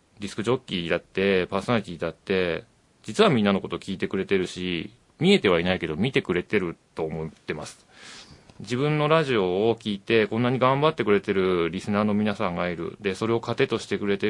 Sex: male